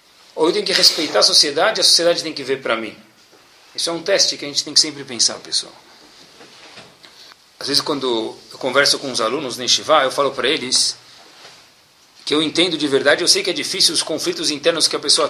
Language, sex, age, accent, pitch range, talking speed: Portuguese, male, 40-59, Brazilian, 135-170 Hz, 210 wpm